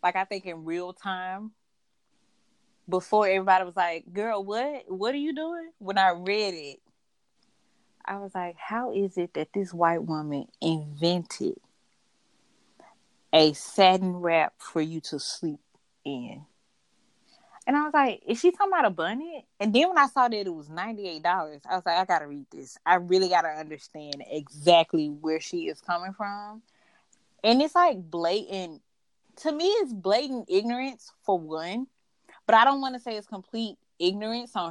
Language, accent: English, American